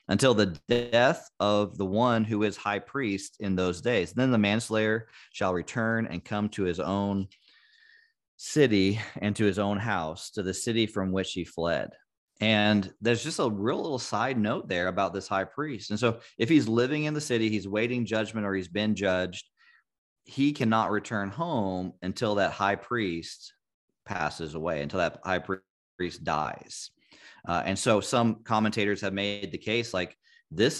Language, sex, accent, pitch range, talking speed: English, male, American, 90-115 Hz, 175 wpm